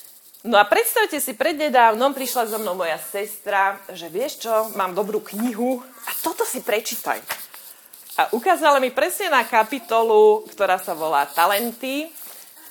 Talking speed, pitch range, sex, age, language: 155 wpm, 190-265 Hz, female, 30-49, Slovak